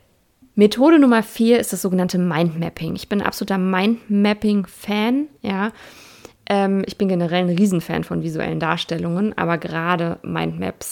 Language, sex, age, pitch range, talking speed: German, female, 20-39, 175-210 Hz, 135 wpm